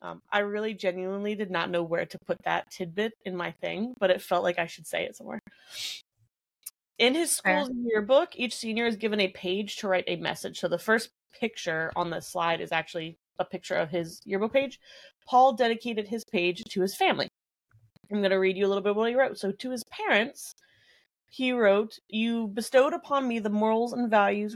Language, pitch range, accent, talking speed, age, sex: English, 185-235 Hz, American, 210 wpm, 20-39, female